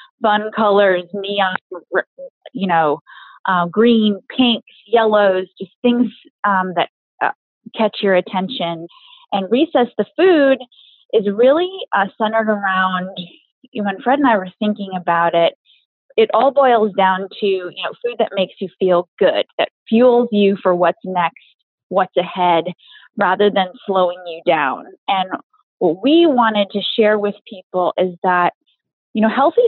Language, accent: English, American